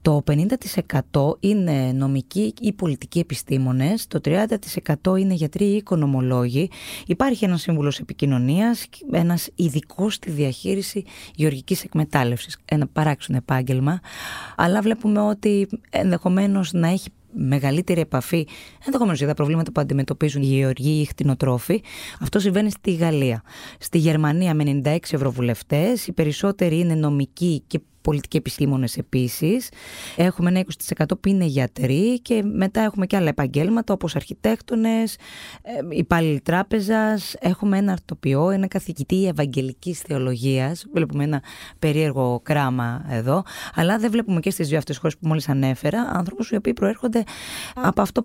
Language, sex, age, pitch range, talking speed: Greek, female, 20-39, 140-195 Hz, 130 wpm